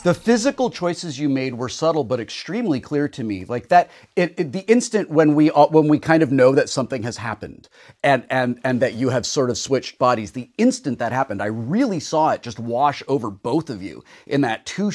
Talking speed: 230 wpm